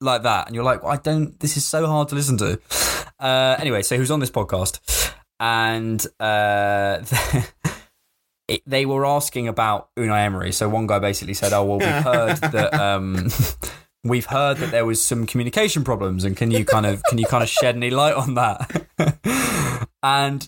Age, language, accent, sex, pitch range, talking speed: 20-39, English, British, male, 110-155 Hz, 195 wpm